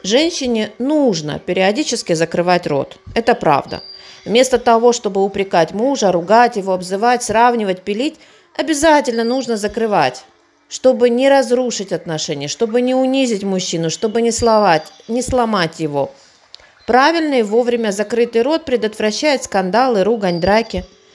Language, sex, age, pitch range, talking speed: Russian, female, 40-59, 185-245 Hz, 115 wpm